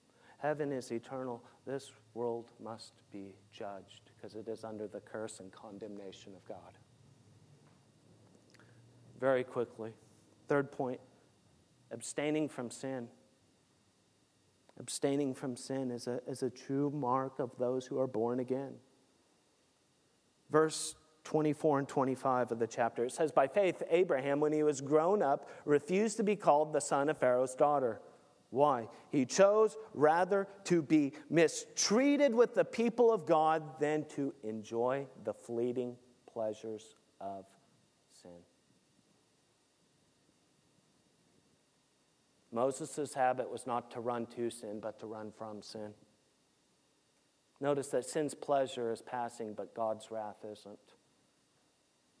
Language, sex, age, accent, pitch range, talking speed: English, male, 40-59, American, 110-150 Hz, 125 wpm